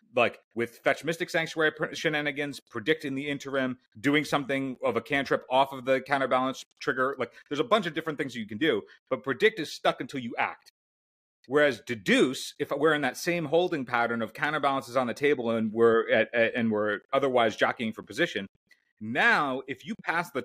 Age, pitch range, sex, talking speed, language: 30-49, 120-165 Hz, male, 195 wpm, English